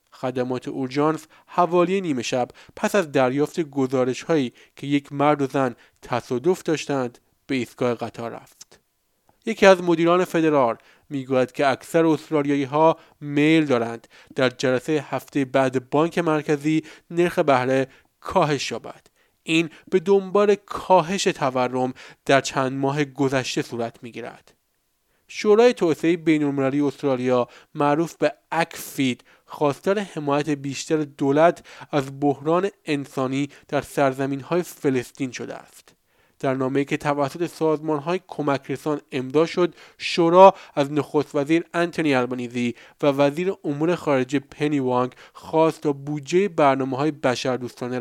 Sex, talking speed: male, 125 wpm